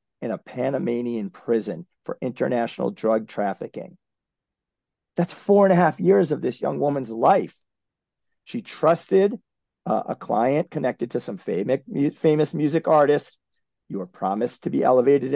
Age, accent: 40-59, American